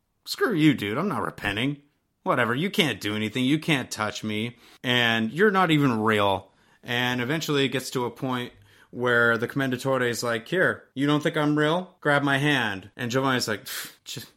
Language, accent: English, American